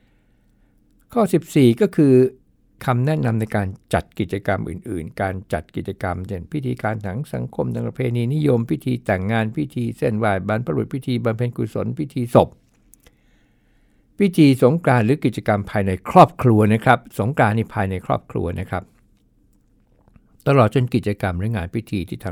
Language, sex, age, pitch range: Thai, male, 60-79, 95-125 Hz